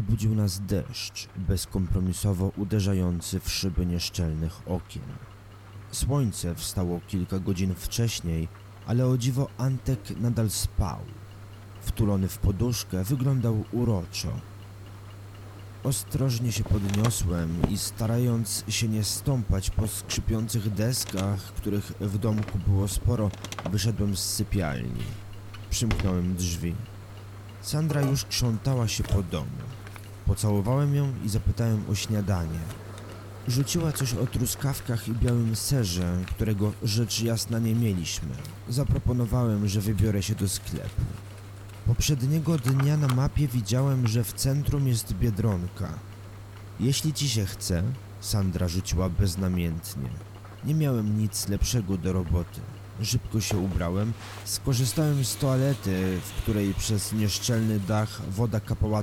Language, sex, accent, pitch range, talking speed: Polish, male, native, 100-115 Hz, 115 wpm